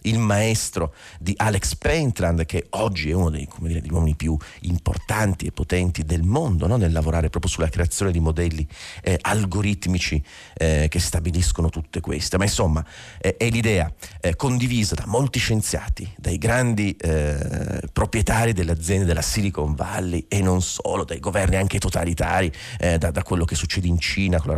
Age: 40-59